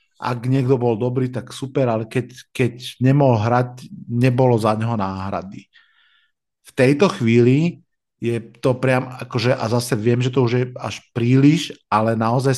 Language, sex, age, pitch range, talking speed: Slovak, male, 50-69, 115-135 Hz, 155 wpm